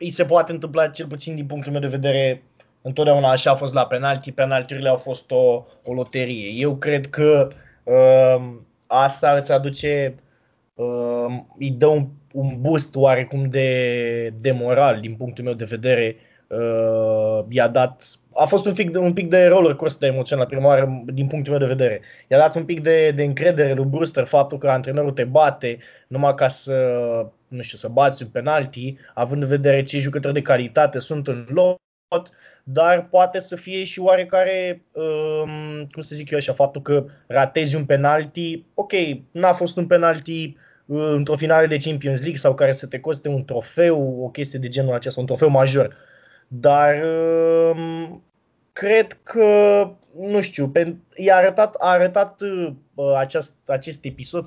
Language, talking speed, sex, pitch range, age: Romanian, 170 wpm, male, 130-165 Hz, 20-39